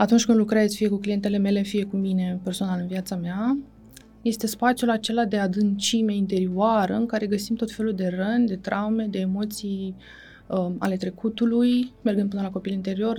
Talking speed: 175 wpm